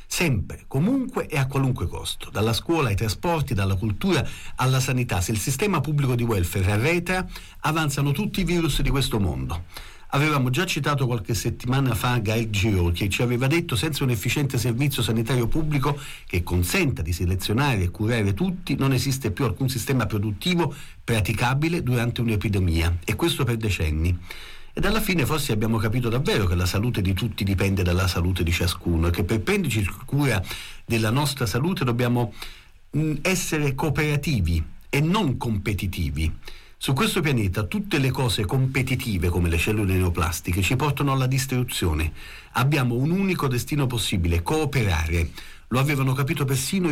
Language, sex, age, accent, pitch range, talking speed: Italian, male, 40-59, native, 100-140 Hz, 160 wpm